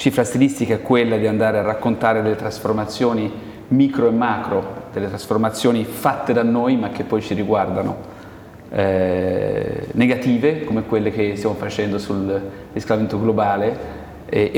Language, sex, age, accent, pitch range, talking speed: Italian, male, 30-49, native, 105-120 Hz, 135 wpm